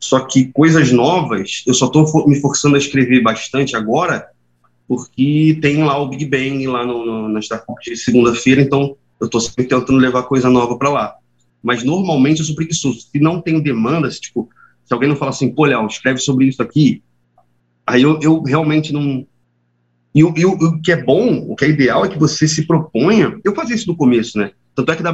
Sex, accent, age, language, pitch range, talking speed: male, Brazilian, 30-49, Portuguese, 115-155 Hz, 210 wpm